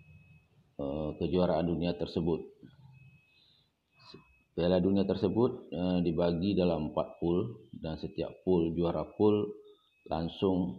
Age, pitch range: 50-69, 85-95 Hz